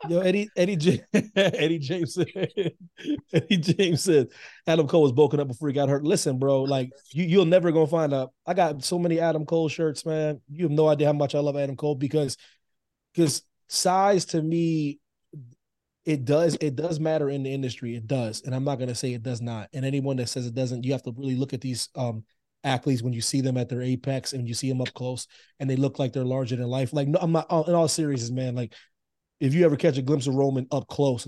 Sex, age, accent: male, 20-39, American